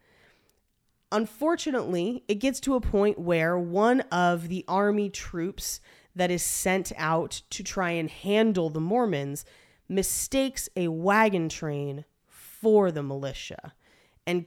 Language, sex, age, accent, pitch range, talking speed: English, female, 30-49, American, 170-220 Hz, 125 wpm